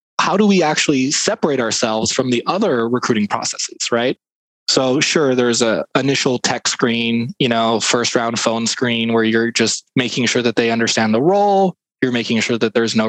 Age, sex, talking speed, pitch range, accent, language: 20-39, male, 190 wpm, 115-140 Hz, American, English